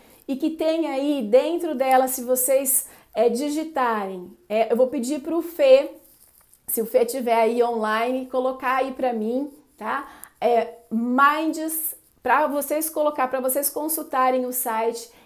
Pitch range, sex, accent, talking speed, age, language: 240-300 Hz, female, Brazilian, 140 wpm, 40-59, Portuguese